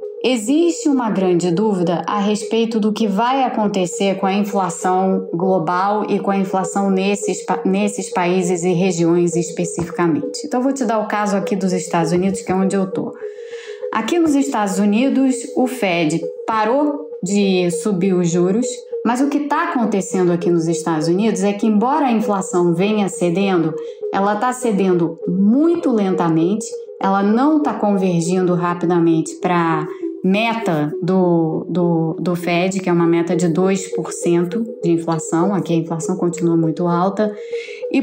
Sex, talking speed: female, 155 wpm